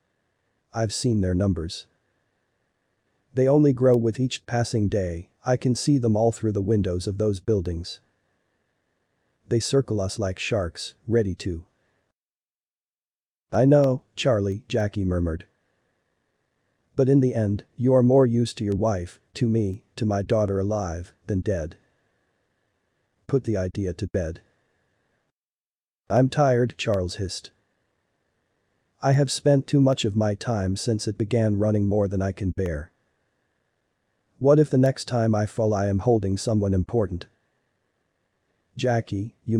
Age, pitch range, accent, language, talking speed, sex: 40-59, 100-125 Hz, American, English, 140 wpm, male